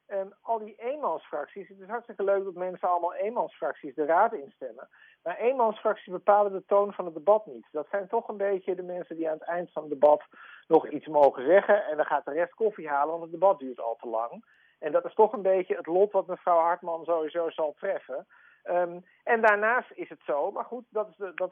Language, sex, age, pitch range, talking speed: Dutch, male, 50-69, 165-220 Hz, 220 wpm